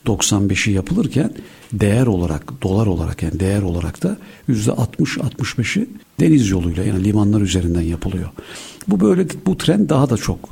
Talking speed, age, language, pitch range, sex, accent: 150 wpm, 60-79, Turkish, 95-130 Hz, male, native